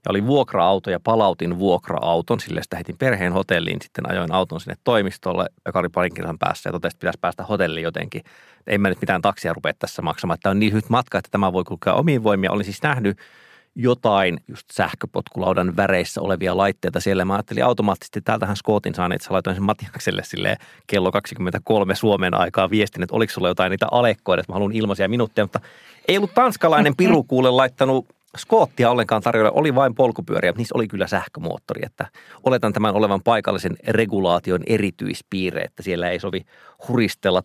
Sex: male